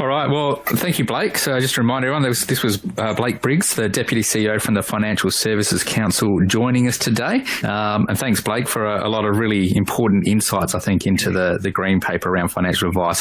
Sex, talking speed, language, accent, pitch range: male, 215 wpm, English, Australian, 105-130 Hz